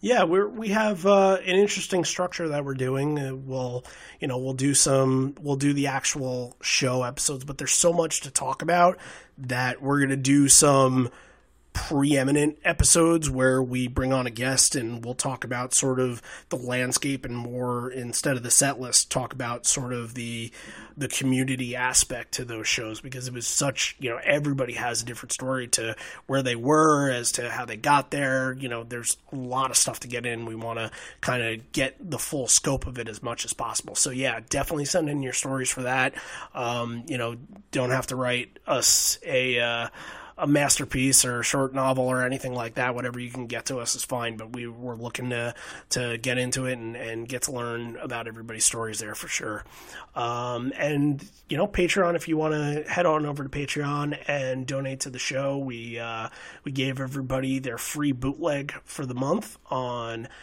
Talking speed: 205 wpm